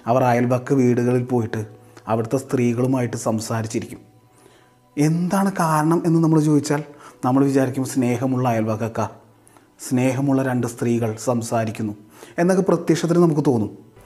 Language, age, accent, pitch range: Malayalam, 30-49, native, 120-150 Hz